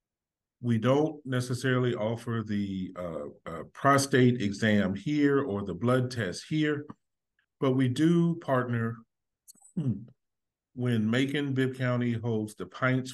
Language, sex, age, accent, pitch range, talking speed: English, male, 50-69, American, 105-130 Hz, 125 wpm